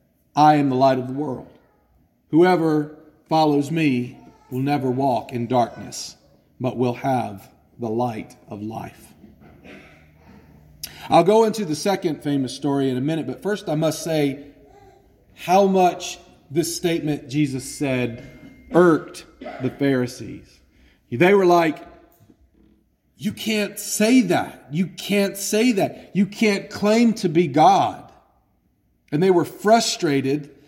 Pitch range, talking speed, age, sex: 105-175 Hz, 130 wpm, 40-59, male